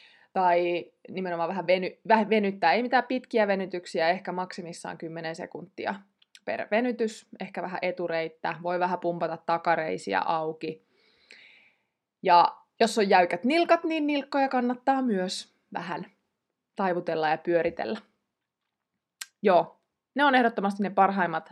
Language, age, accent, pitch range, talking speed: Finnish, 20-39, native, 170-225 Hz, 115 wpm